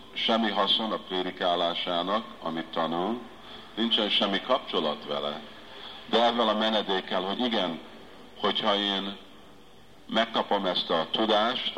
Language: Hungarian